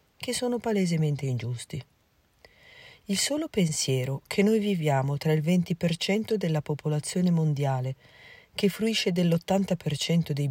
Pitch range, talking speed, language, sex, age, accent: 135-195 Hz, 115 wpm, Italian, female, 40-59, native